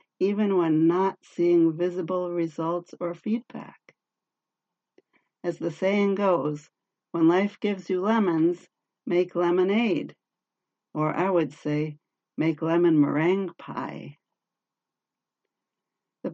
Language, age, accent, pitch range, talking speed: English, 60-79, American, 155-180 Hz, 105 wpm